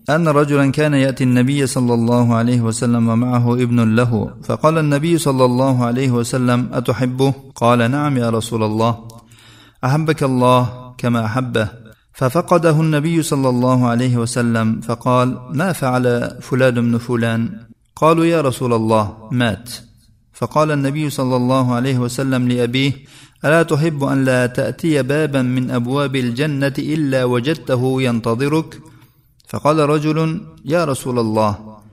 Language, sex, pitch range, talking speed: Russian, male, 115-135 Hz, 110 wpm